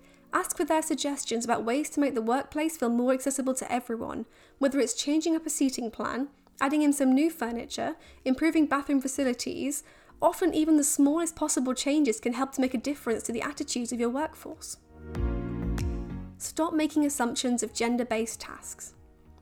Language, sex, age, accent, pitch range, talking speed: English, female, 10-29, British, 240-300 Hz, 165 wpm